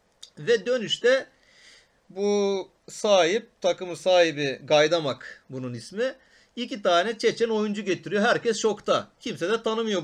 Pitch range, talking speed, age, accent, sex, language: 150-210 Hz, 115 wpm, 40-59, native, male, Turkish